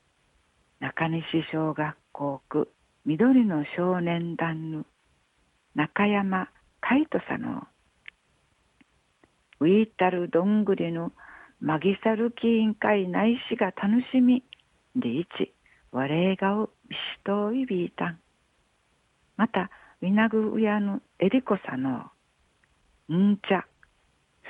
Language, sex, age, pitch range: Japanese, female, 60-79, 165-215 Hz